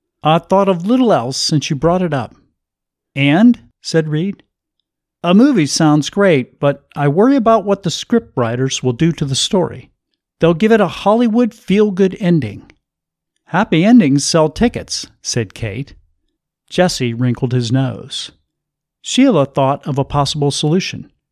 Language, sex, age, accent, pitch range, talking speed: English, male, 50-69, American, 125-190 Hz, 150 wpm